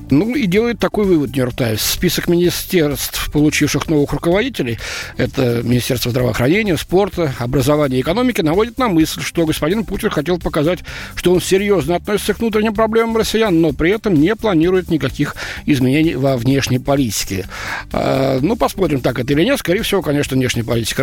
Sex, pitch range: male, 130-185 Hz